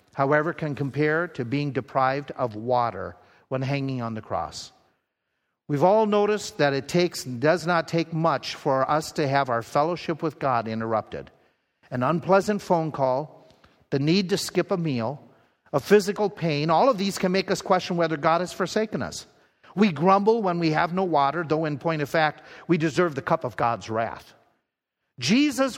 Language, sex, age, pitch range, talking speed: English, male, 50-69, 130-195 Hz, 180 wpm